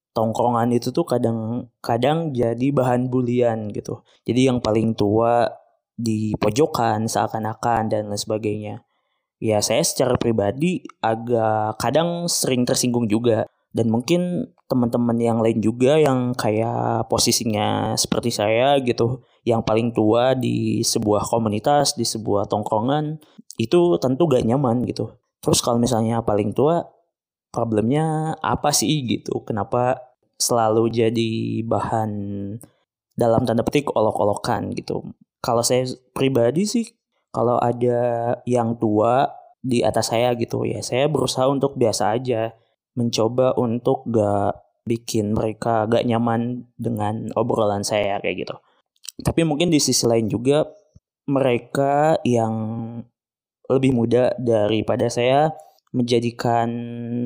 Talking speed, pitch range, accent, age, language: 120 wpm, 110-125 Hz, native, 20-39, Indonesian